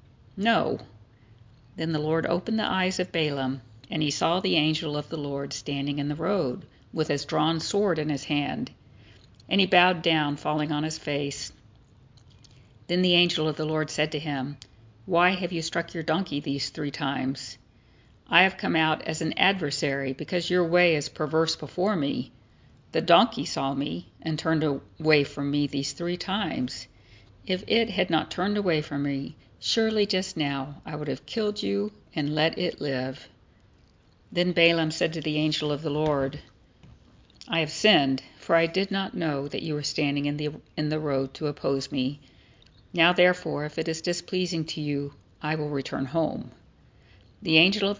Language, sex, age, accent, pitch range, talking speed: English, female, 50-69, American, 135-170 Hz, 180 wpm